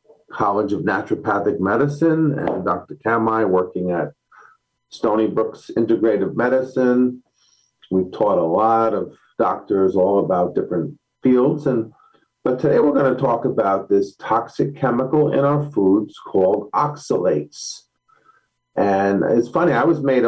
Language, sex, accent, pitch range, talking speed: English, male, American, 100-130 Hz, 135 wpm